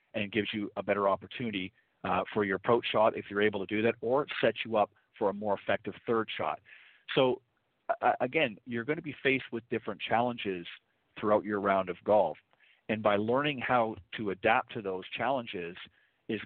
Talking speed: 195 wpm